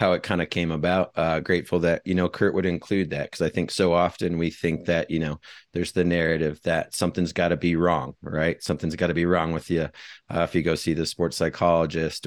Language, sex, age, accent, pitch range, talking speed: English, male, 30-49, American, 80-90 Hz, 245 wpm